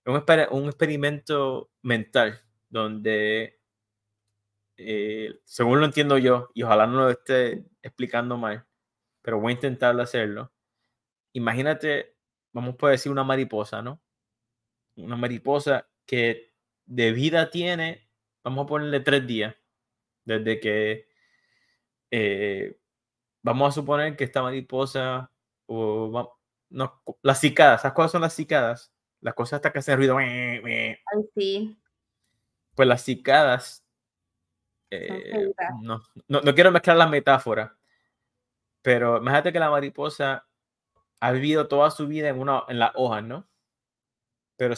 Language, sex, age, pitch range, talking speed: Spanish, male, 20-39, 115-145 Hz, 120 wpm